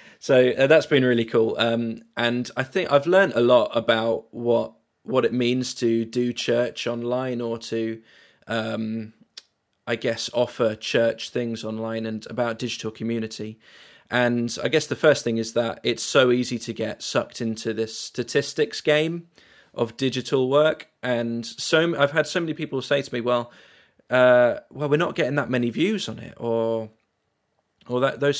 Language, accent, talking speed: English, British, 175 wpm